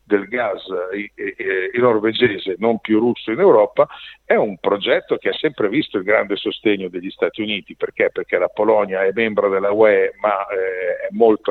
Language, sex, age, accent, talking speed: Italian, male, 50-69, native, 165 wpm